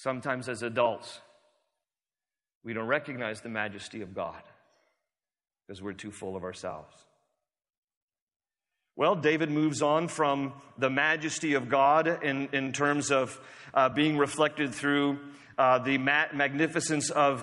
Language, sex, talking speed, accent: English, male, 125 wpm, American